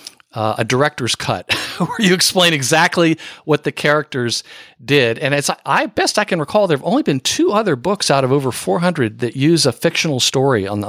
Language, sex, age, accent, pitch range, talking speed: English, male, 50-69, American, 125-165 Hz, 200 wpm